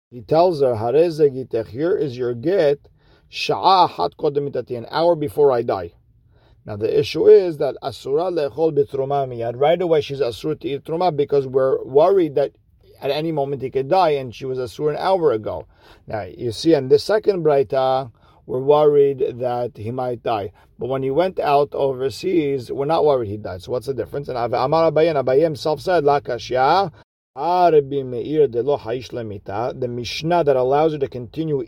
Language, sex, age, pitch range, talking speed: English, male, 50-69, 130-160 Hz, 150 wpm